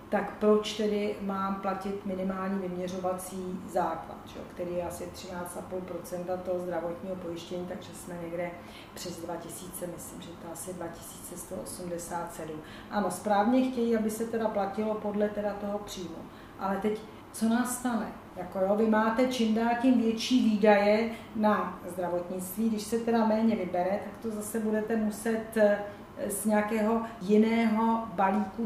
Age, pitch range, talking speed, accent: 40-59, 190-220 Hz, 140 wpm, native